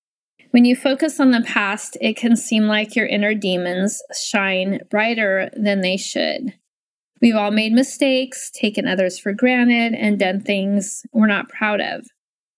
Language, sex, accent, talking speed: English, female, American, 155 wpm